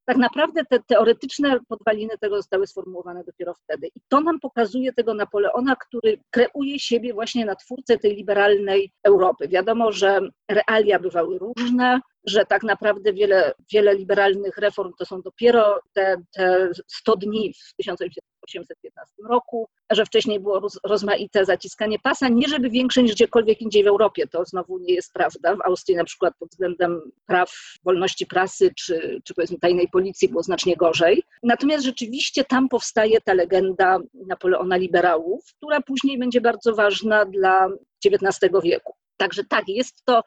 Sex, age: female, 40-59